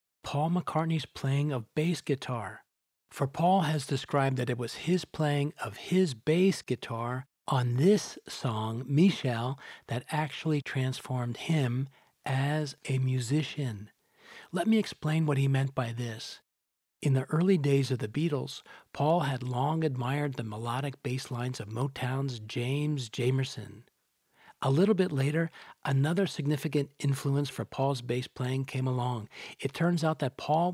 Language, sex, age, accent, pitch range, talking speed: English, male, 40-59, American, 125-150 Hz, 145 wpm